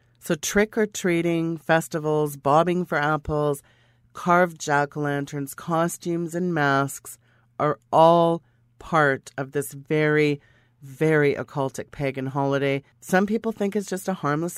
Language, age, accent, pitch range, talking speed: English, 40-59, American, 140-175 Hz, 115 wpm